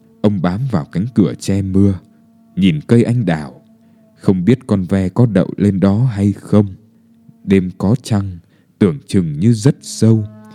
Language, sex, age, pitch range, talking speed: Vietnamese, male, 20-39, 100-145 Hz, 165 wpm